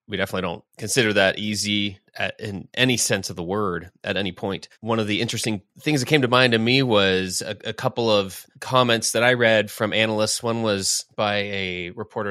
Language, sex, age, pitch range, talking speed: English, male, 20-39, 95-115 Hz, 205 wpm